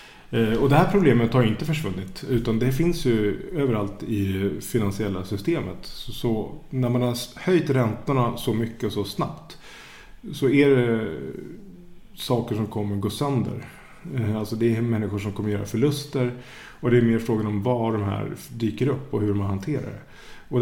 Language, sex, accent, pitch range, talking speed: Swedish, male, Norwegian, 105-135 Hz, 175 wpm